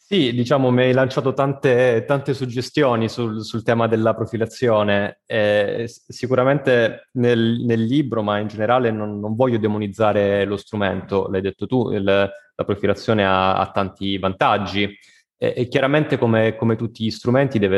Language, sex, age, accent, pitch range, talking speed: Italian, male, 20-39, native, 100-135 Hz, 155 wpm